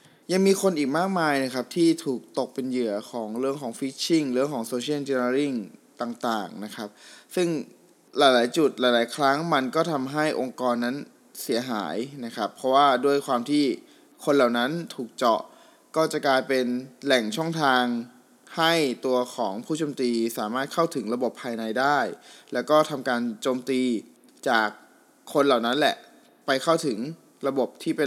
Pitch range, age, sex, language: 120-155 Hz, 20-39, male, Thai